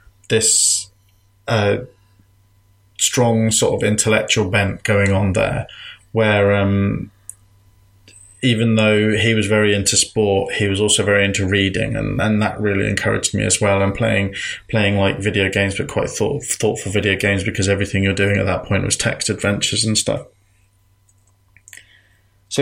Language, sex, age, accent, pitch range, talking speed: English, male, 20-39, British, 100-110 Hz, 150 wpm